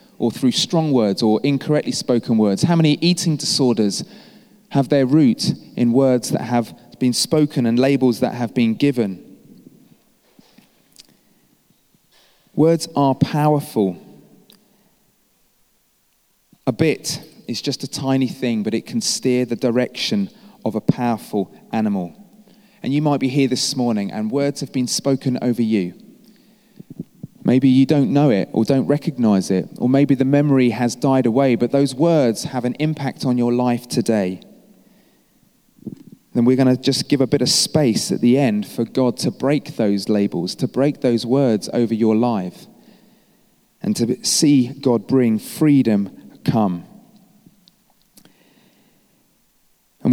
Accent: British